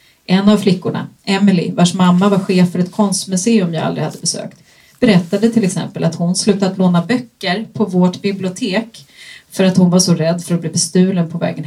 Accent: native